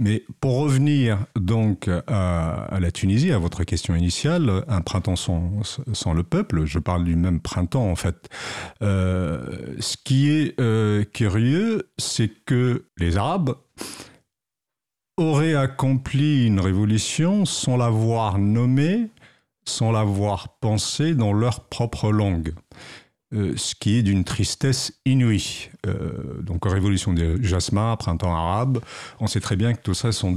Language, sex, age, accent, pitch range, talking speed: French, male, 50-69, French, 95-130 Hz, 140 wpm